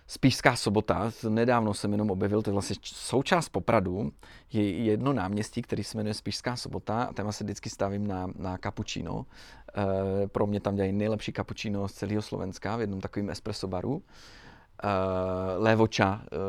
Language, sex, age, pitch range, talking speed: Slovak, male, 30-49, 100-115 Hz, 155 wpm